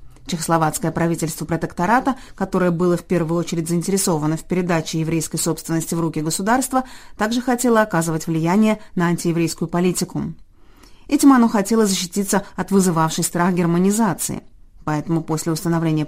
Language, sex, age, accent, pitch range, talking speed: Russian, female, 30-49, native, 165-210 Hz, 125 wpm